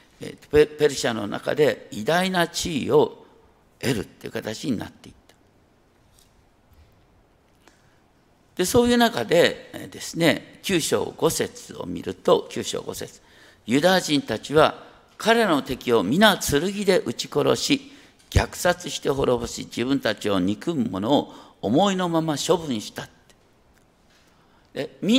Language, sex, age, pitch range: Japanese, male, 50-69, 155-245 Hz